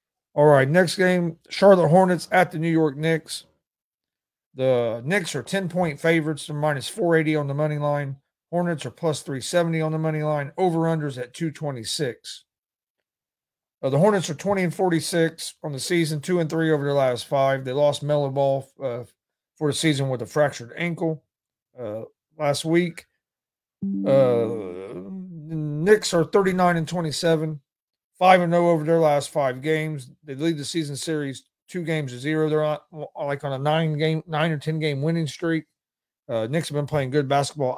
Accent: American